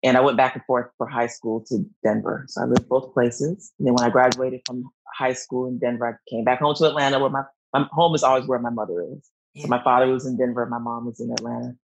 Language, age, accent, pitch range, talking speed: English, 30-49, American, 120-140 Hz, 260 wpm